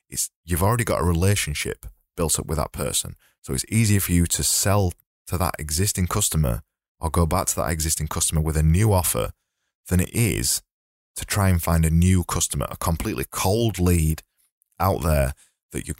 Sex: male